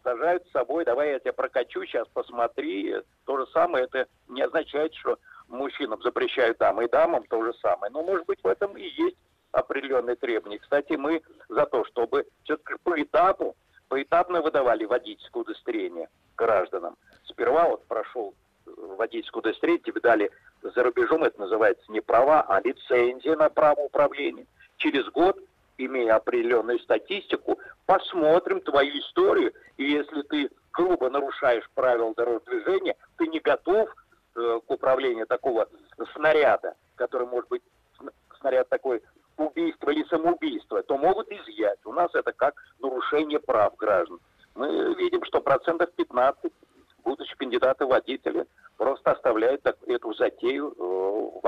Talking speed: 140 wpm